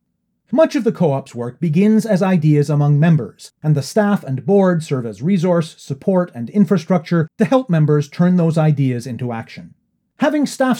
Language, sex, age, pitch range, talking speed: English, male, 30-49, 145-200 Hz, 170 wpm